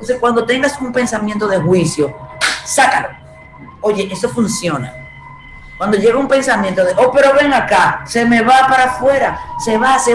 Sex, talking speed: female, 165 wpm